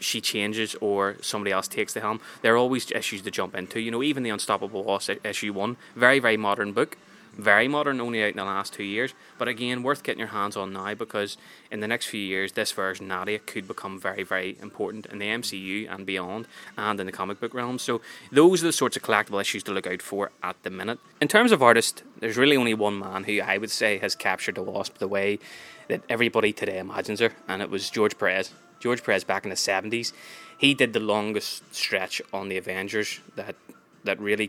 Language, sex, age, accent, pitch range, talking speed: English, male, 20-39, Irish, 100-115 Hz, 225 wpm